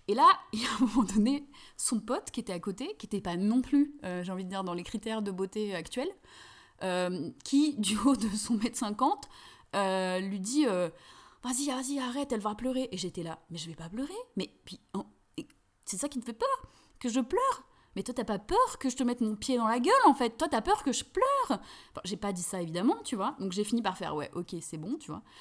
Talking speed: 280 wpm